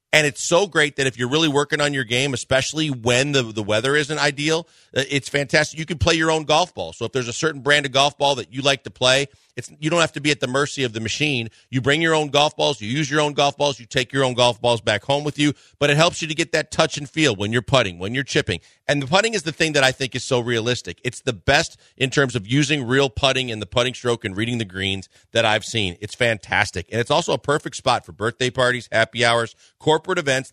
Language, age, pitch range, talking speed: English, 40-59, 120-150 Hz, 275 wpm